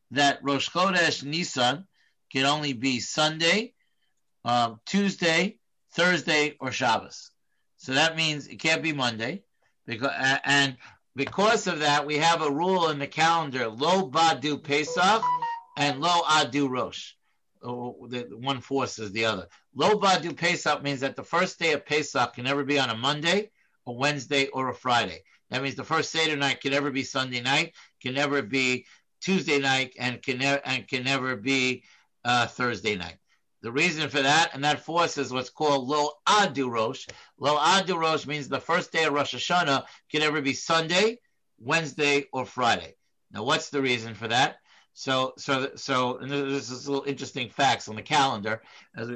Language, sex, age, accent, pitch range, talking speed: English, male, 50-69, American, 130-165 Hz, 170 wpm